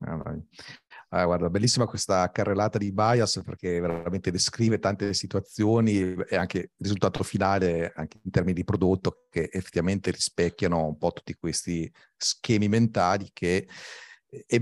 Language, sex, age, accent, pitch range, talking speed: Italian, male, 40-59, native, 85-105 Hz, 135 wpm